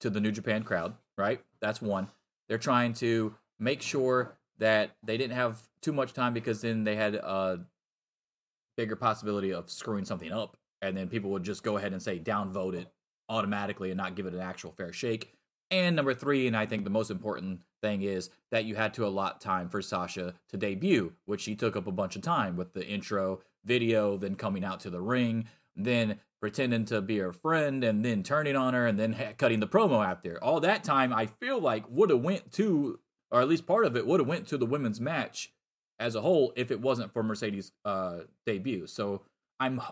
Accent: American